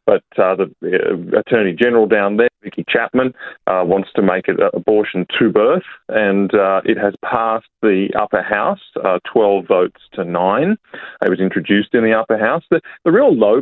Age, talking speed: 30-49, 190 wpm